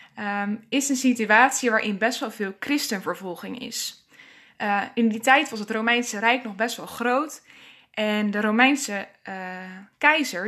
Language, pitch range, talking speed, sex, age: Dutch, 205-250 Hz, 150 wpm, female, 20-39